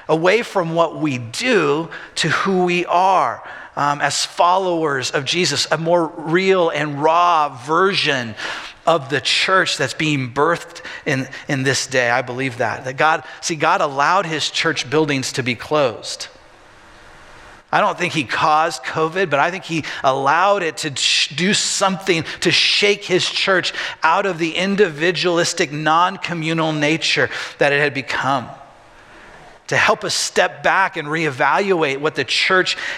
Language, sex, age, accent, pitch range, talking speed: English, male, 40-59, American, 135-170 Hz, 155 wpm